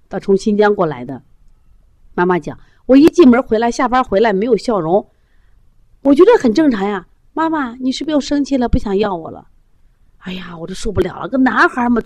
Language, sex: Chinese, female